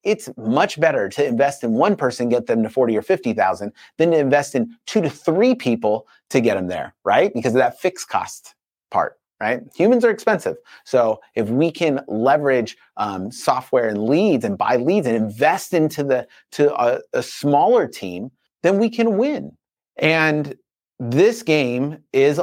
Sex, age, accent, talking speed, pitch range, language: male, 30-49, American, 180 wpm, 115-160 Hz, English